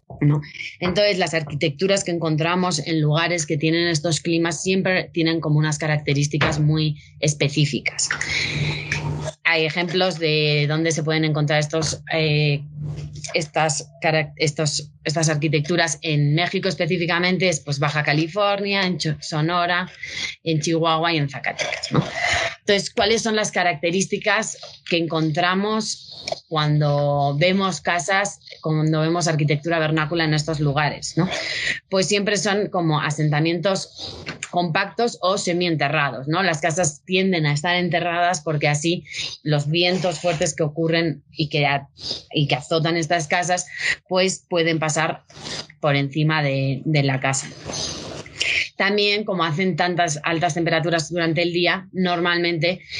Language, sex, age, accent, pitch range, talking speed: Spanish, female, 20-39, Spanish, 150-175 Hz, 130 wpm